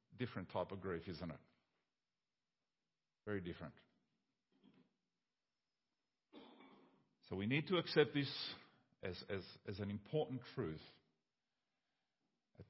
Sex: male